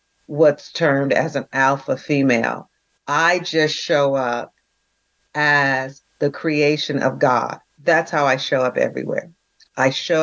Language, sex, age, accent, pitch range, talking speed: English, female, 40-59, American, 135-155 Hz, 135 wpm